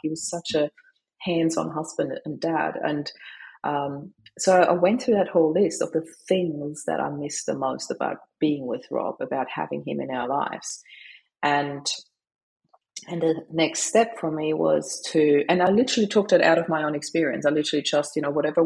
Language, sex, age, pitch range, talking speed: English, female, 30-49, 145-175 Hz, 195 wpm